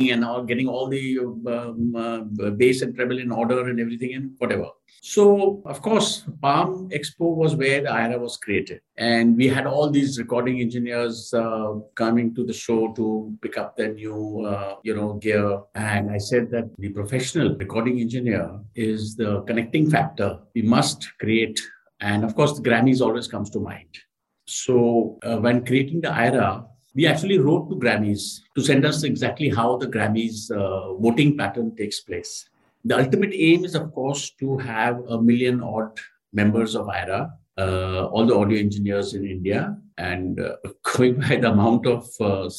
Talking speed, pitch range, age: 175 wpm, 110-140 Hz, 50-69